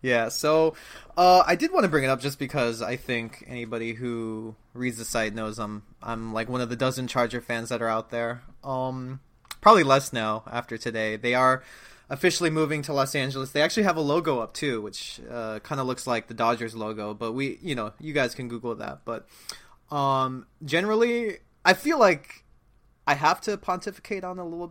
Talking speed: 205 wpm